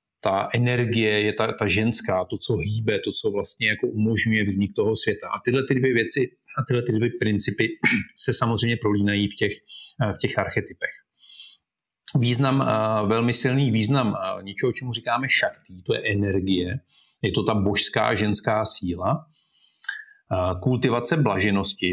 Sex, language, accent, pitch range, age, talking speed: male, Czech, native, 105-130 Hz, 40-59, 150 wpm